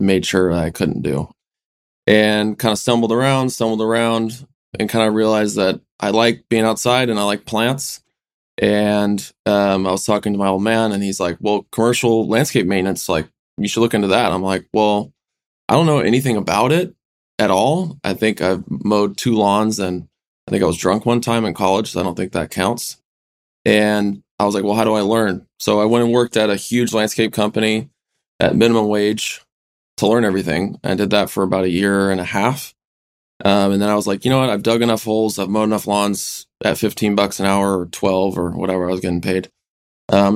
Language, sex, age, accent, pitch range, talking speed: English, male, 20-39, American, 95-110 Hz, 215 wpm